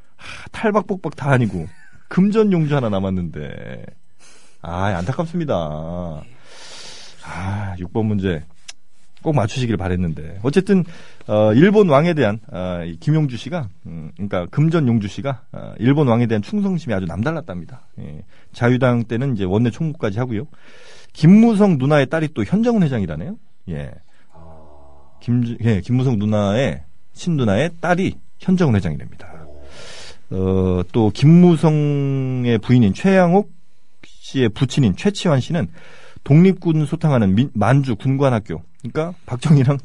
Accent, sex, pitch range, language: native, male, 100-165 Hz, Korean